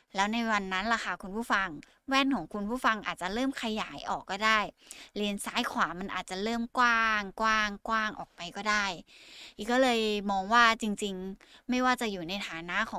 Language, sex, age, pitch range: Thai, female, 20-39, 195-240 Hz